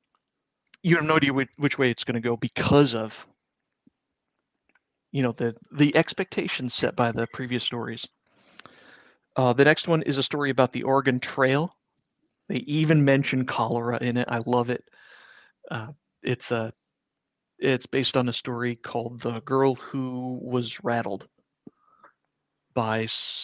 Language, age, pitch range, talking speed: English, 40-59, 120-135 Hz, 150 wpm